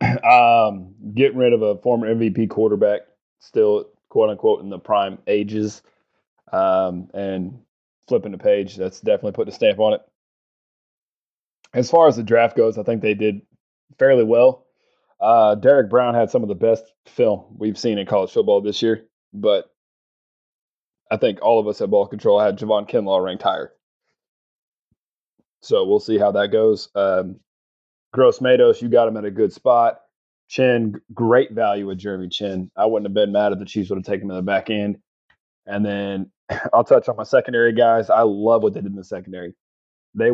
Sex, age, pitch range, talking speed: male, 20-39, 105-165 Hz, 185 wpm